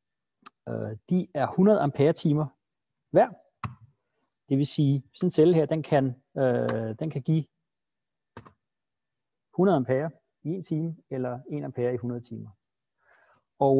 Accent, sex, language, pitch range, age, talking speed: native, male, Danish, 125-175 Hz, 40-59, 135 wpm